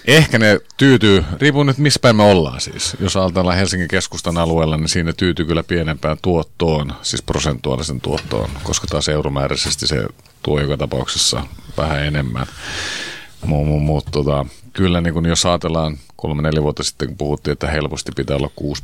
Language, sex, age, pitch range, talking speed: Finnish, male, 40-59, 75-90 Hz, 165 wpm